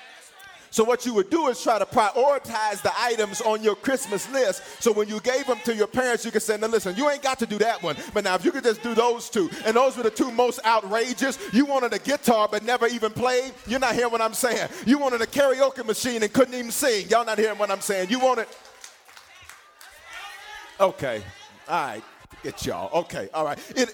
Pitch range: 165-240 Hz